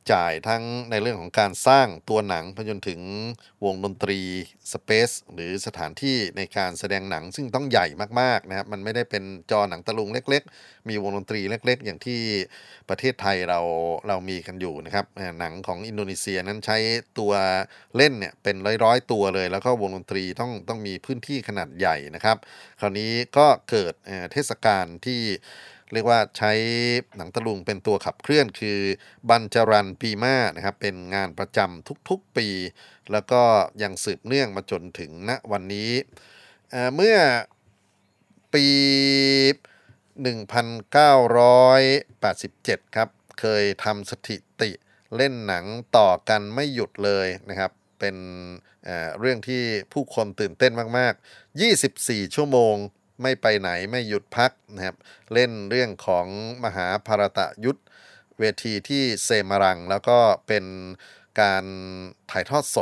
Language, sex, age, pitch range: Thai, male, 30-49, 95-120 Hz